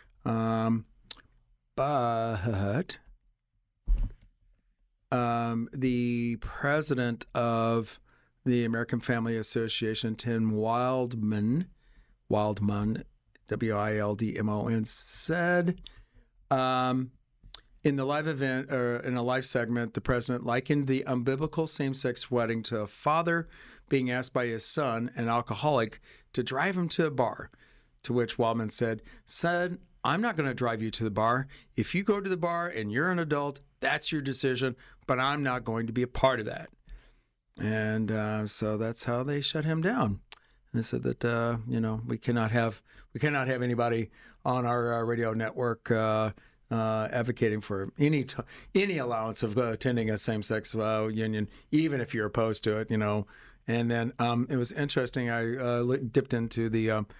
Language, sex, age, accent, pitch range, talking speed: English, male, 40-59, American, 110-130 Hz, 155 wpm